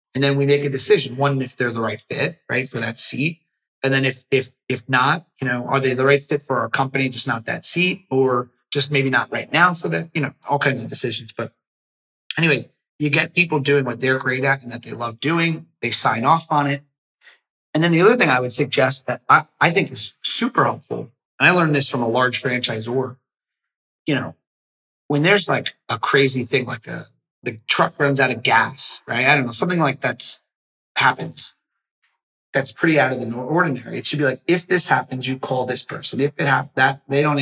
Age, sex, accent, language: 30-49, male, American, English